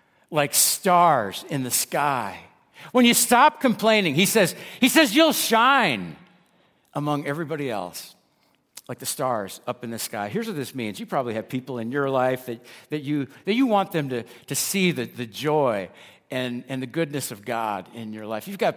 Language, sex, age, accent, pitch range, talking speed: English, male, 60-79, American, 125-170 Hz, 190 wpm